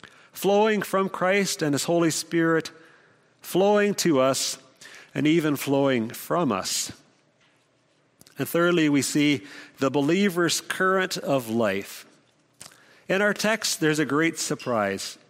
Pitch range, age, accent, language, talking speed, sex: 135-180 Hz, 50-69, American, English, 120 wpm, male